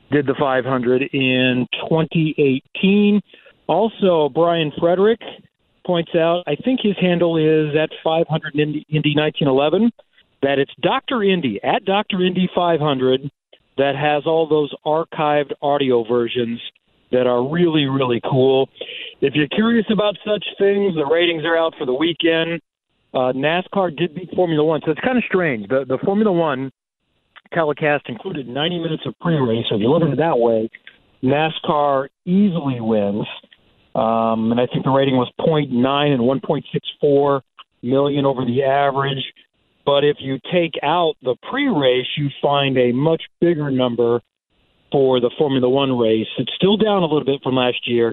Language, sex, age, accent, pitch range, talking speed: English, male, 40-59, American, 130-170 Hz, 155 wpm